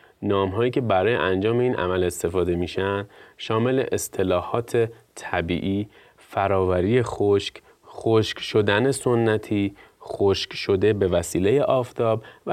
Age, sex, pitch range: 30-49, male, 100-135 Hz